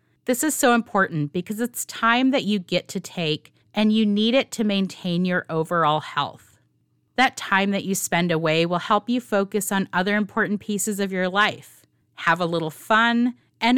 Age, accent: 30-49, American